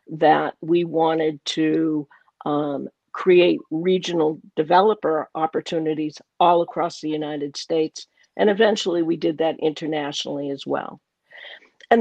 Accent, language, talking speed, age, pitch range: American, English, 115 wpm, 50-69, 155-180 Hz